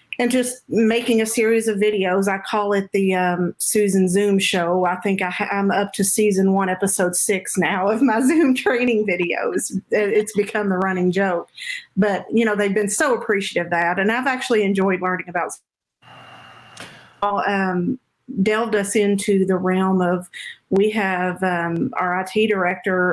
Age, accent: 50-69, American